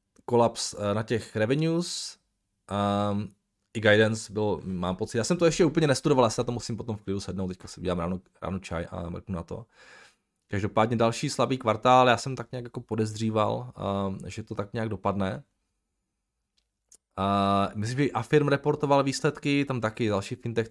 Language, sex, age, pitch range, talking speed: Czech, male, 20-39, 100-125 Hz, 175 wpm